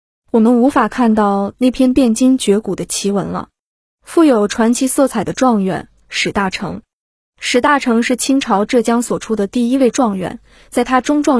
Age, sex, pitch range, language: 20-39, female, 210-260 Hz, Chinese